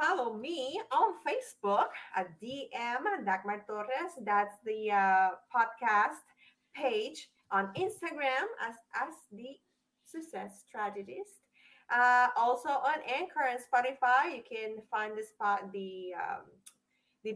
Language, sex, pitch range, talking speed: English, female, 210-275 Hz, 120 wpm